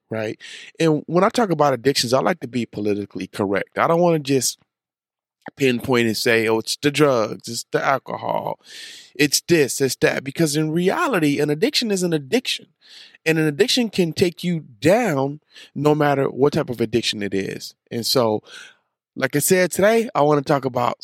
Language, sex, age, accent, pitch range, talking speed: English, male, 20-39, American, 120-165 Hz, 190 wpm